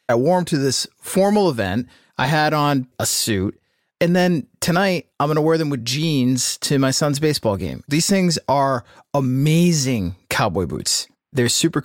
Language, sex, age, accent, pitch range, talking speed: English, male, 30-49, American, 120-150 Hz, 175 wpm